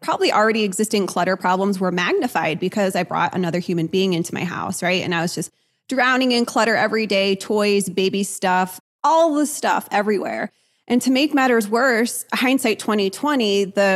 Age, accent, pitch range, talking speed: 20-39, American, 180-220 Hz, 175 wpm